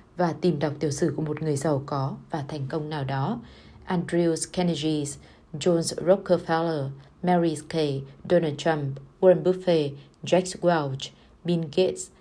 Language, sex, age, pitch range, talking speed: Vietnamese, female, 20-39, 155-205 Hz, 145 wpm